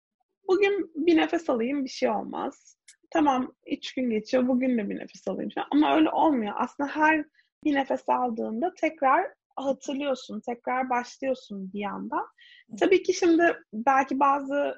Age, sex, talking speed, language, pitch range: 30-49, female, 140 wpm, Turkish, 235-305 Hz